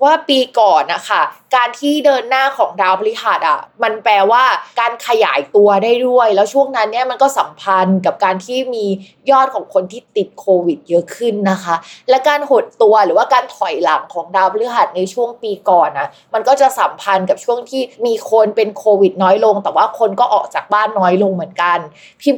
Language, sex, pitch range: Thai, female, 200-260 Hz